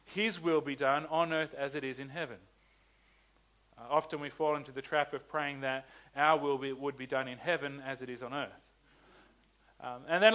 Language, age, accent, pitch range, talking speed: English, 40-59, Australian, 140-180 Hz, 215 wpm